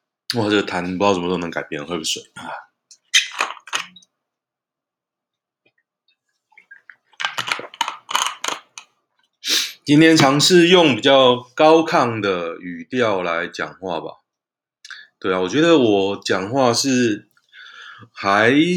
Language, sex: Chinese, male